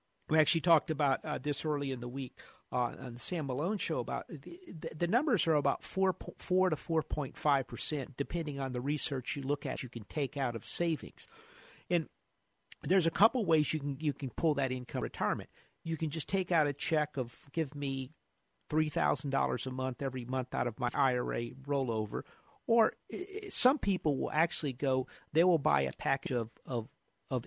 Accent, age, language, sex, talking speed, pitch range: American, 50-69, English, male, 205 wpm, 130-160 Hz